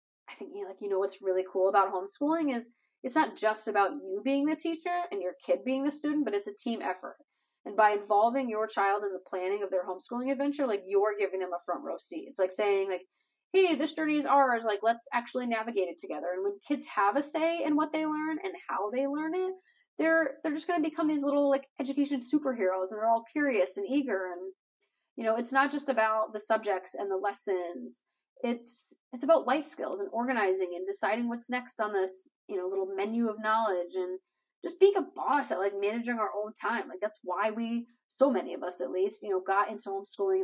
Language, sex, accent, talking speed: English, female, American, 230 wpm